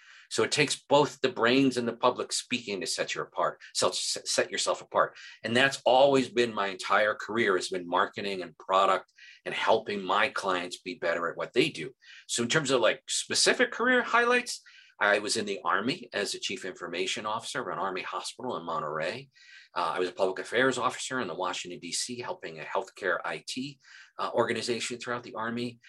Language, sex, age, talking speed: English, male, 50-69, 190 wpm